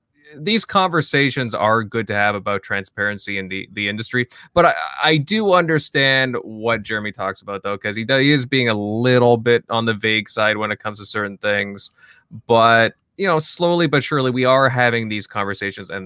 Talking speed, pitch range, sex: 195 wpm, 105-145 Hz, male